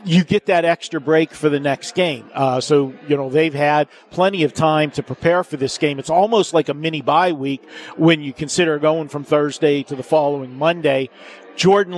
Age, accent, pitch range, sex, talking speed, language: 50-69, American, 150-175 Hz, male, 205 wpm, English